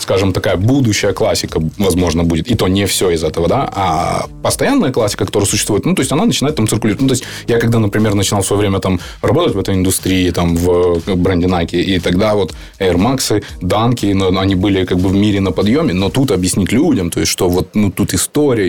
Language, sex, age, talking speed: Ukrainian, male, 20-39, 225 wpm